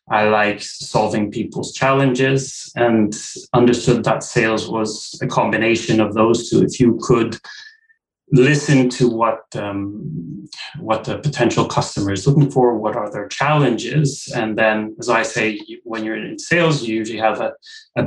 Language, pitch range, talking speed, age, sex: English, 110-145 Hz, 155 wpm, 30-49, male